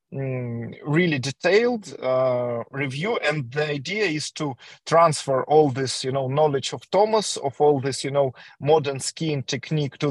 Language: English